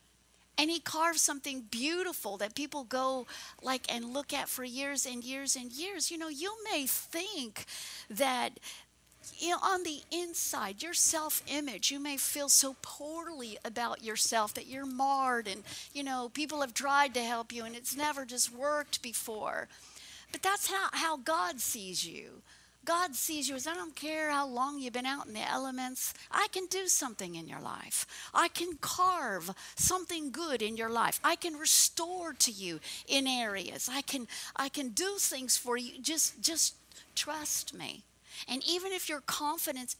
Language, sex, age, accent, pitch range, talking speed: English, female, 50-69, American, 235-305 Hz, 170 wpm